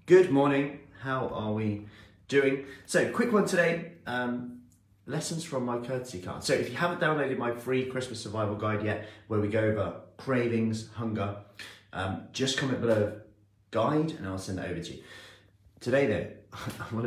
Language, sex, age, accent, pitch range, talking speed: English, male, 30-49, British, 90-110 Hz, 170 wpm